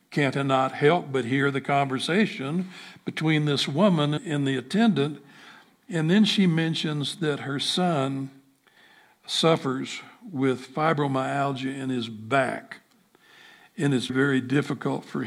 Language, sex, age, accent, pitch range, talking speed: English, male, 60-79, American, 130-155 Hz, 125 wpm